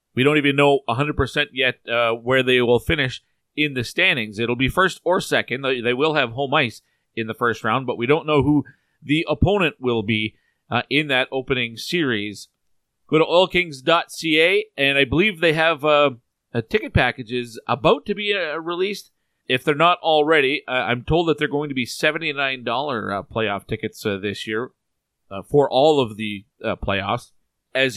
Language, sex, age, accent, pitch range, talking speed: English, male, 40-59, American, 120-155 Hz, 180 wpm